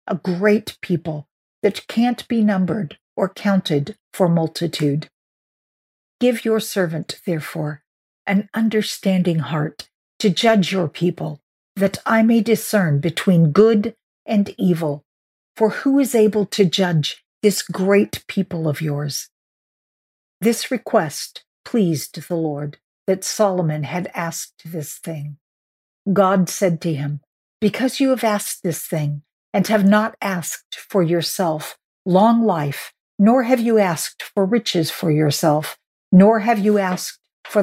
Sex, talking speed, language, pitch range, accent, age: female, 130 wpm, English, 160-215 Hz, American, 50-69